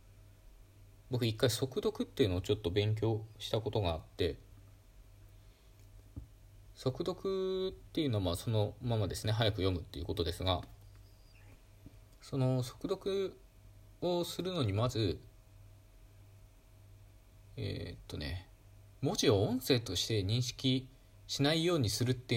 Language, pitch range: Japanese, 100-125 Hz